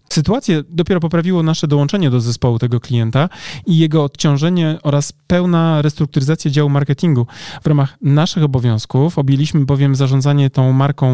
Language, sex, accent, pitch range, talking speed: Polish, male, native, 125-155 Hz, 140 wpm